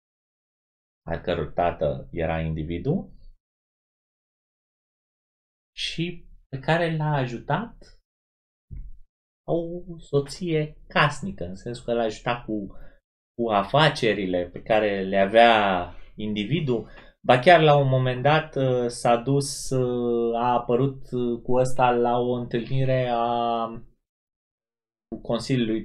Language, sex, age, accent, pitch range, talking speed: Romanian, male, 30-49, native, 95-130 Hz, 95 wpm